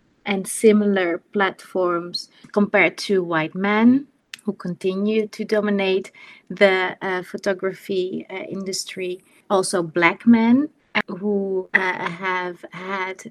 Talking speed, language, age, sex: 105 wpm, English, 30-49, female